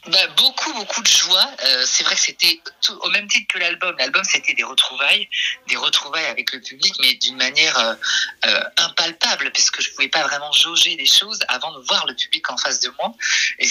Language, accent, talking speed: French, French, 220 wpm